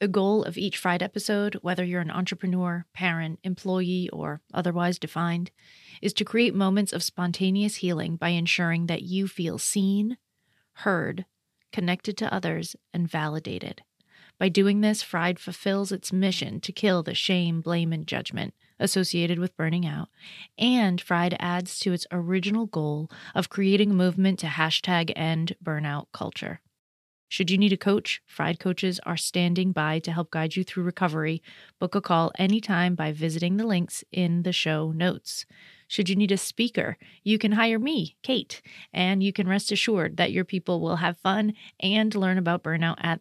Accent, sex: American, female